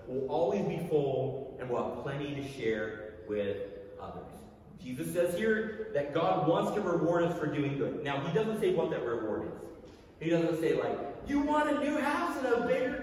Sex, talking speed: male, 205 wpm